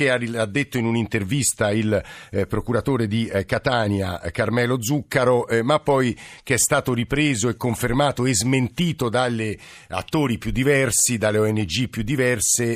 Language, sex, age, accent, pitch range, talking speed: Italian, male, 50-69, native, 100-125 Hz, 155 wpm